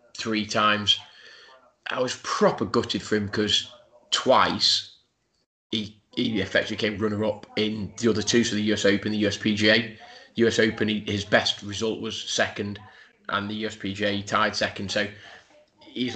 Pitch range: 100-125 Hz